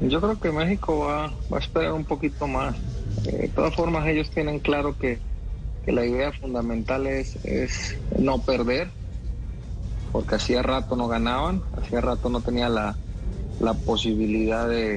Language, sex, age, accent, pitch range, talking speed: Spanish, male, 30-49, Mexican, 110-130 Hz, 160 wpm